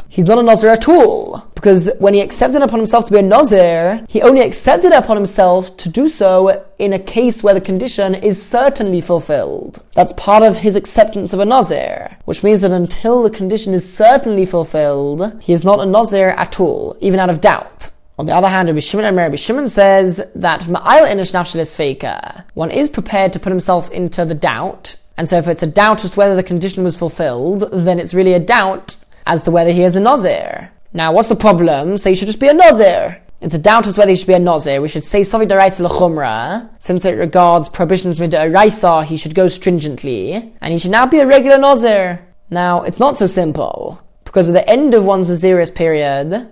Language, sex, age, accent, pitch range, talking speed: English, male, 20-39, British, 175-215 Hz, 210 wpm